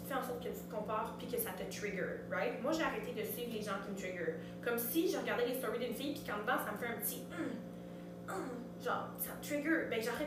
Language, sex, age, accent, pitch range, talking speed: French, female, 20-39, Canadian, 185-240 Hz, 270 wpm